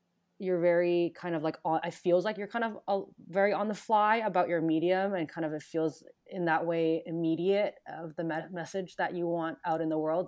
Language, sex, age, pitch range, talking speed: English, female, 20-39, 155-190 Hz, 215 wpm